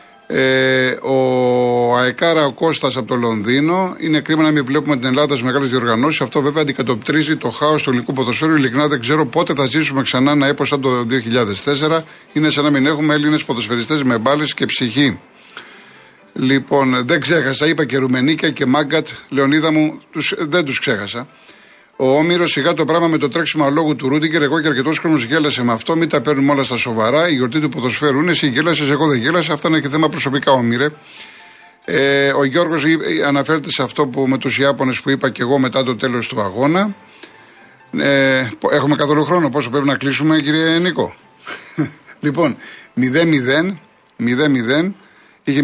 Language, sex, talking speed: Greek, male, 175 wpm